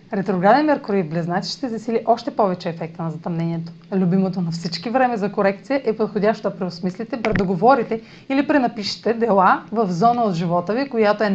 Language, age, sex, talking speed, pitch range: Bulgarian, 30-49, female, 165 wpm, 175-230 Hz